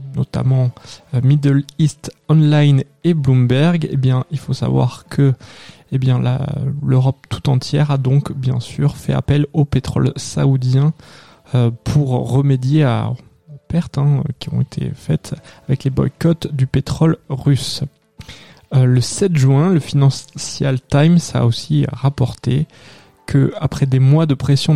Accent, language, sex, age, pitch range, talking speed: French, French, male, 20-39, 130-145 Hz, 135 wpm